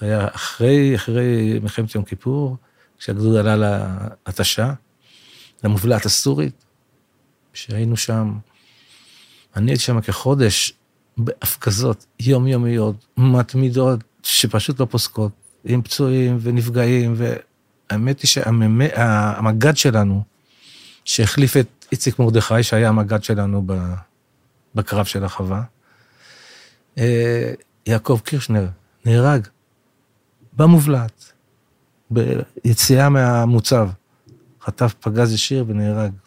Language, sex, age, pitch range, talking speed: Hebrew, male, 40-59, 110-130 Hz, 85 wpm